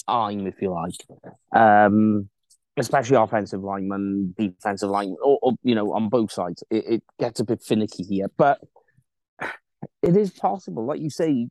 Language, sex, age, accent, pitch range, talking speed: English, male, 30-49, British, 105-140 Hz, 165 wpm